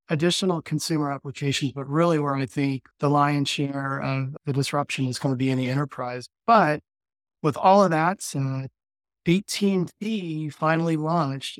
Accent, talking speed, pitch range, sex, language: American, 160 wpm, 140-160 Hz, male, English